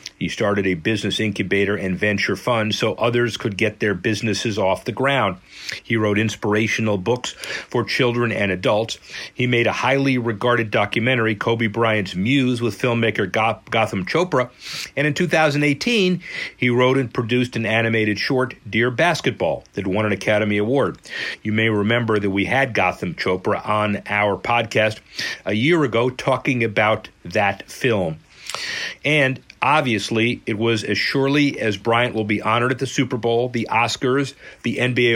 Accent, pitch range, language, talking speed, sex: American, 110-135 Hz, English, 155 wpm, male